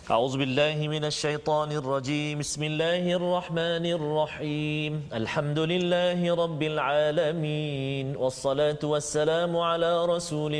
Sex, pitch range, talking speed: male, 135-170 Hz, 95 wpm